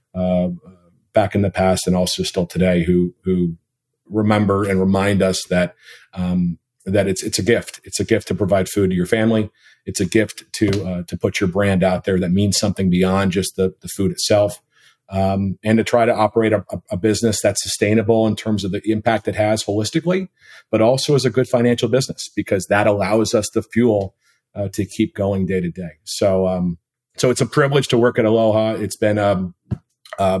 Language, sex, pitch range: English, male, 95-110 Hz